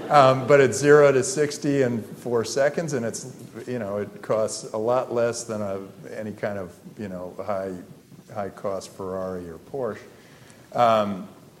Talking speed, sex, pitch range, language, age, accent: 160 wpm, male, 110-140 Hz, English, 50-69, American